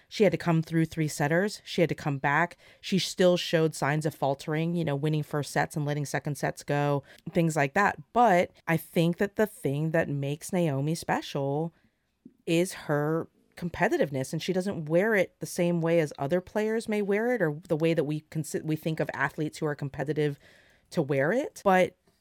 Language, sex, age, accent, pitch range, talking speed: English, female, 30-49, American, 150-185 Hz, 205 wpm